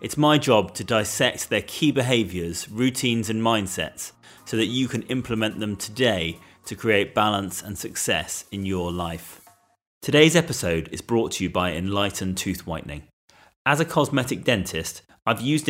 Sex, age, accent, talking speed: male, 30-49, British, 160 wpm